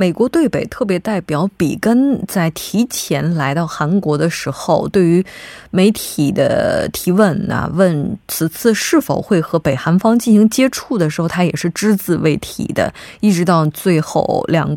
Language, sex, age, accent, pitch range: Korean, female, 20-39, Chinese, 165-215 Hz